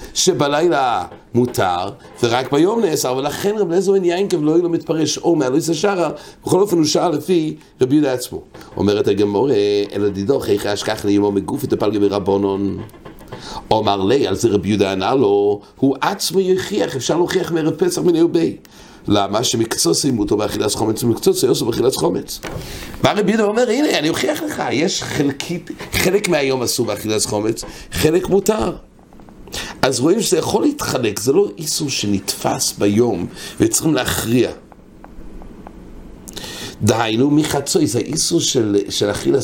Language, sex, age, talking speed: English, male, 60-79, 145 wpm